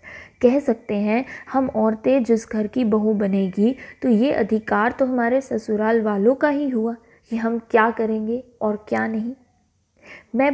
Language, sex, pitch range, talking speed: Hindi, female, 210-255 Hz, 160 wpm